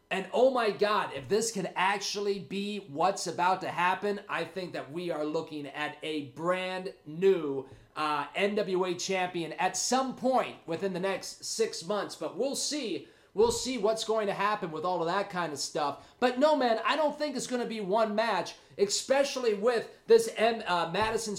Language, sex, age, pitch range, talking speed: English, male, 30-49, 180-245 Hz, 190 wpm